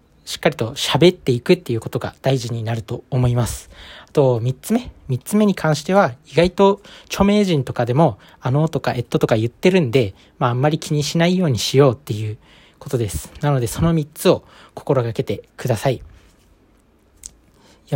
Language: Japanese